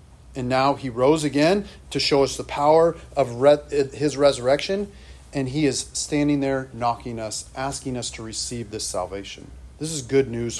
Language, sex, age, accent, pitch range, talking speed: English, male, 40-59, American, 120-165 Hz, 170 wpm